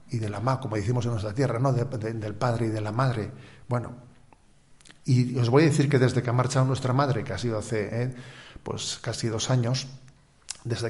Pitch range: 115-135 Hz